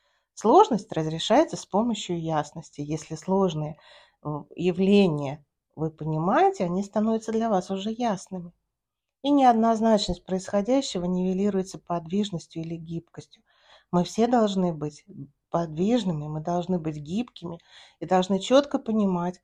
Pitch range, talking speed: 165-220 Hz, 110 wpm